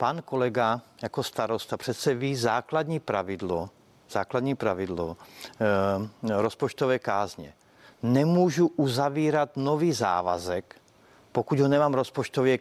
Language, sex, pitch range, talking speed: Czech, male, 115-150 Hz, 95 wpm